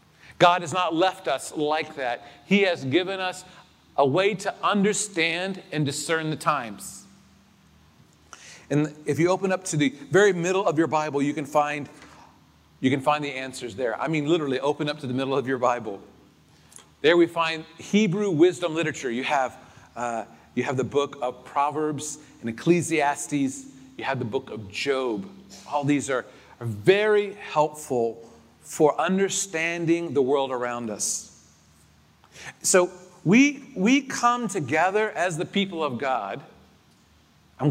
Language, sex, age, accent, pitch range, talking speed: English, male, 40-59, American, 135-175 Hz, 155 wpm